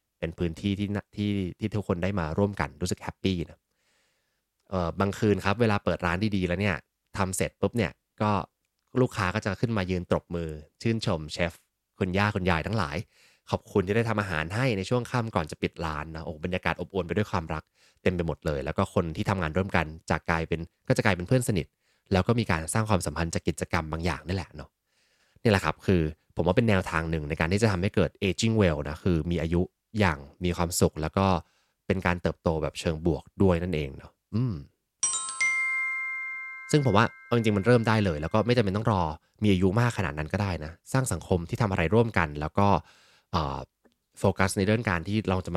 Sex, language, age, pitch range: male, Thai, 20-39, 85-110 Hz